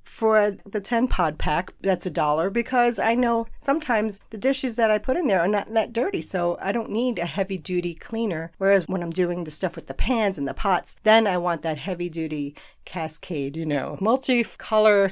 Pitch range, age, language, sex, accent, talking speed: 165-220 Hz, 40-59, English, female, American, 200 wpm